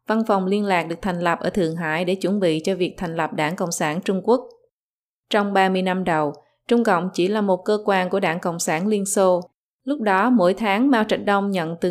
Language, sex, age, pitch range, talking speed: Vietnamese, female, 20-39, 180-225 Hz, 240 wpm